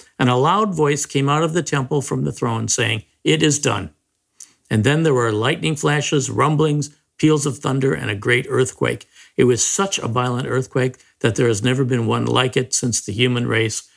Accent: American